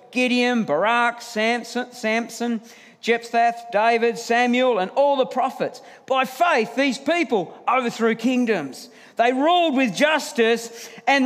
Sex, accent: male, Australian